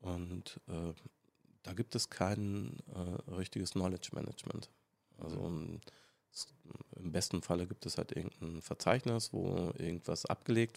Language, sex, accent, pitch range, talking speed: German, male, German, 85-110 Hz, 135 wpm